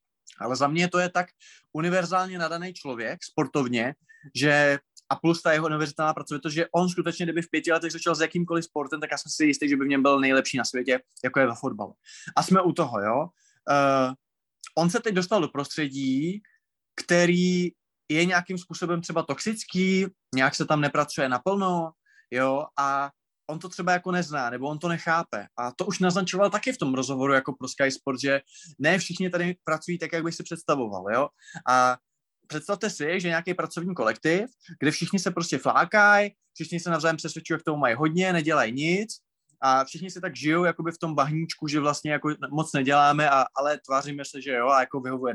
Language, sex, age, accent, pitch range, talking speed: Czech, male, 20-39, native, 140-175 Hz, 195 wpm